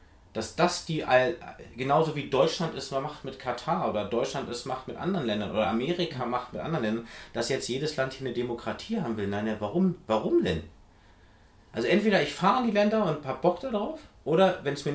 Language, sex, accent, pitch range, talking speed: German, male, German, 100-160 Hz, 210 wpm